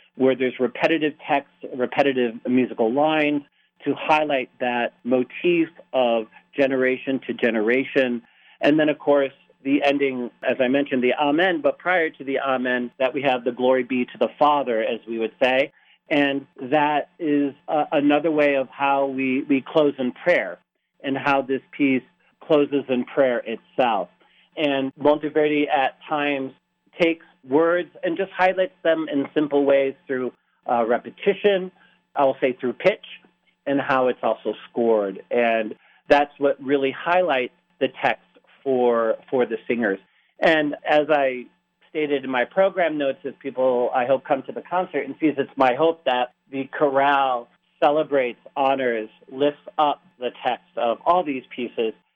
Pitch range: 130-150 Hz